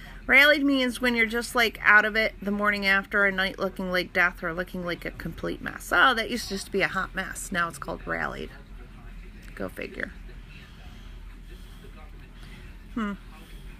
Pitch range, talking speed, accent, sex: 175-240 Hz, 170 wpm, American, female